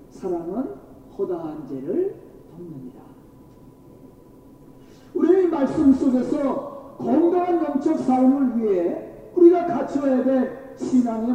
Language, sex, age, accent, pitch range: Korean, male, 50-69, native, 240-340 Hz